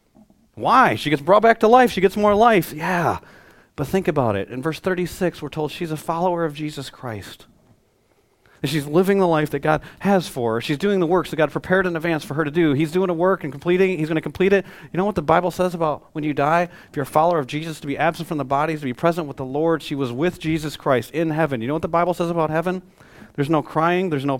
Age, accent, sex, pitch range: 40-59, American, male, 130-165 Hz